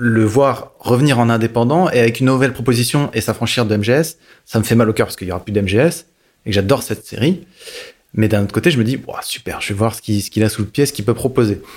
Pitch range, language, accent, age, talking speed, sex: 110-130 Hz, French, French, 20-39, 275 wpm, male